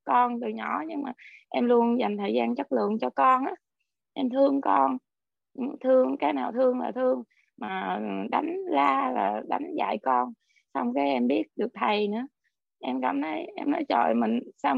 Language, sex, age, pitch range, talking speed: Vietnamese, female, 20-39, 210-275 Hz, 185 wpm